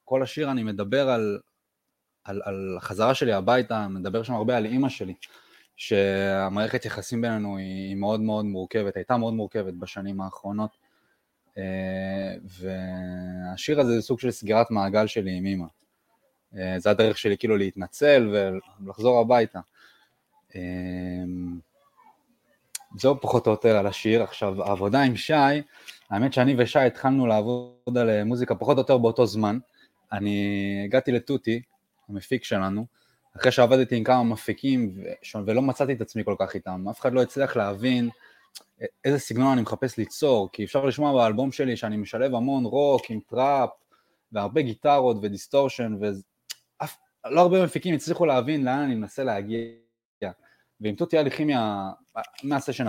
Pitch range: 100-130 Hz